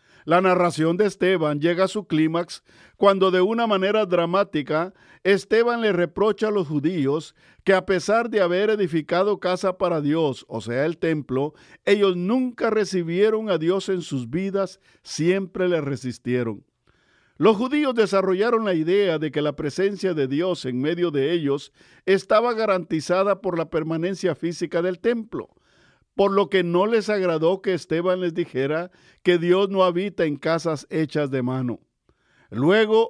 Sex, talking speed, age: male, 155 wpm, 50-69